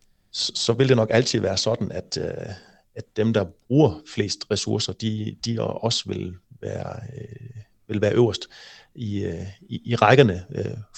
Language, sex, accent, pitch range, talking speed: Danish, male, native, 105-125 Hz, 160 wpm